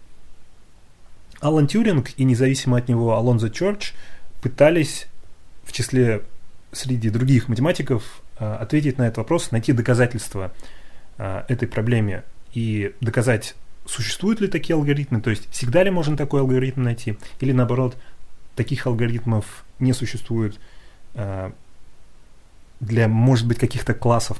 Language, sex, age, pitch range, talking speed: Russian, male, 30-49, 110-130 Hz, 115 wpm